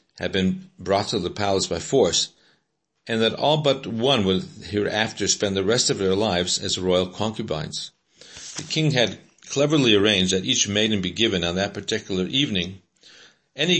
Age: 50-69